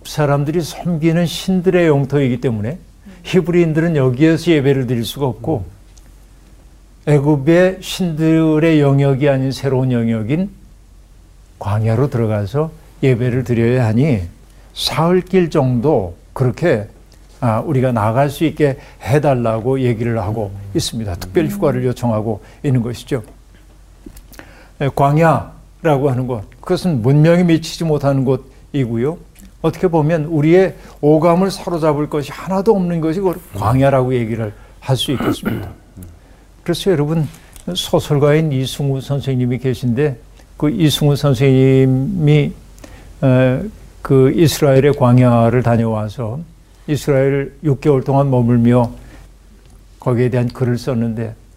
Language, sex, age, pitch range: Korean, male, 60-79, 120-155 Hz